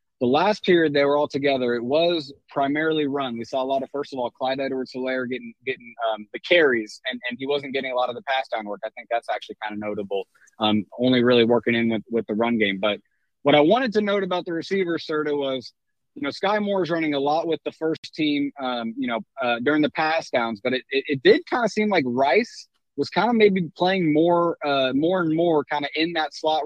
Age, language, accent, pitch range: 30-49, English, American, 125-160 Hz